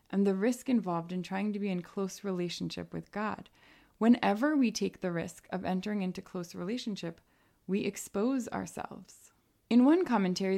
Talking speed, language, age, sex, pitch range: 165 wpm, English, 20-39, female, 190-240 Hz